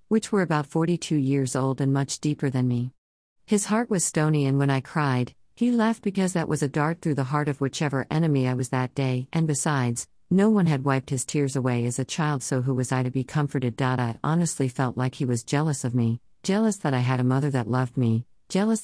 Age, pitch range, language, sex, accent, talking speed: 50-69, 125-160 Hz, English, female, American, 235 wpm